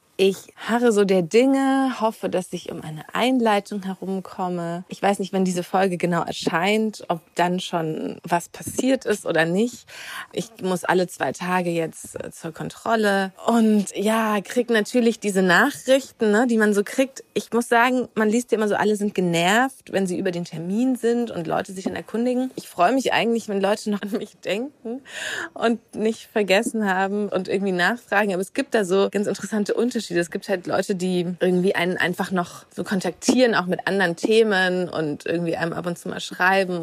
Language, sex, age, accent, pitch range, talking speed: German, female, 30-49, German, 175-220 Hz, 190 wpm